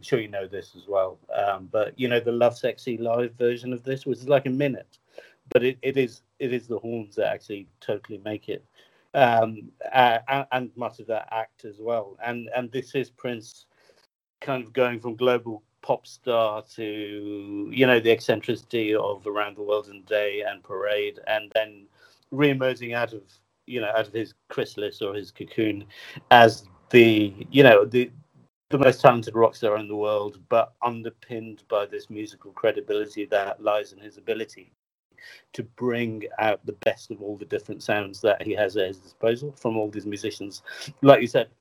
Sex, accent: male, British